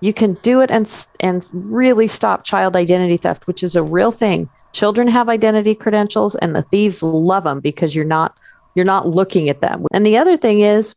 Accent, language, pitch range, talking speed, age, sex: American, English, 170-215 Hz, 210 wpm, 40-59, female